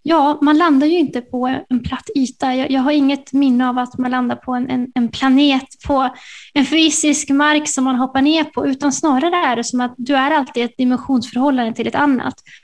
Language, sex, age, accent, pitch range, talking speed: Swedish, female, 20-39, native, 245-285 Hz, 225 wpm